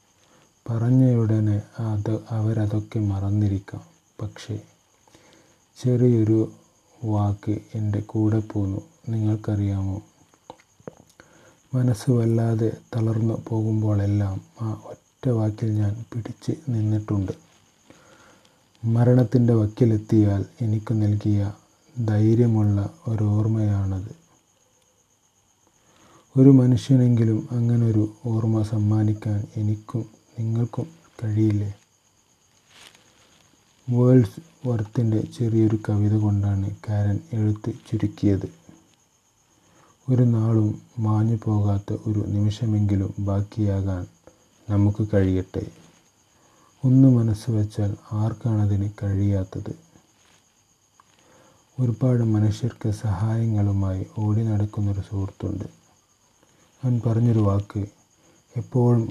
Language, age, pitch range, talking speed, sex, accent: Malayalam, 30-49, 105-115 Hz, 70 wpm, male, native